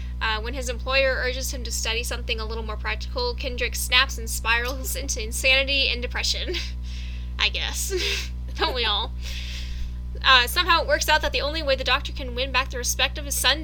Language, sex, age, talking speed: English, female, 10-29, 200 wpm